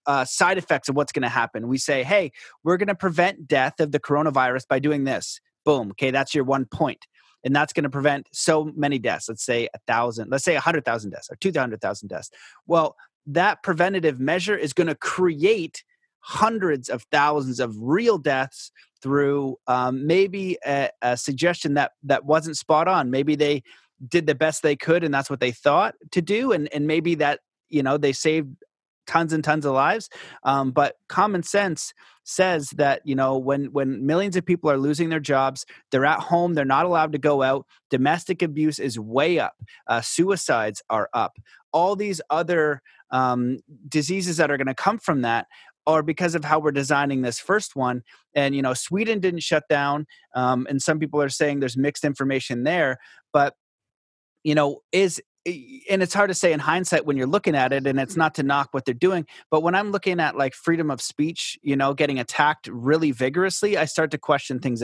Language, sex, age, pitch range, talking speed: English, male, 30-49, 135-170 Hz, 205 wpm